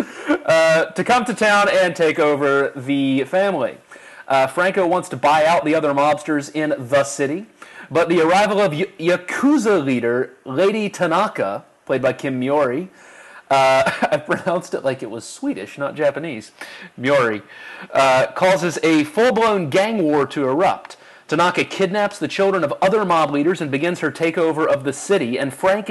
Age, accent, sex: 30-49, American, male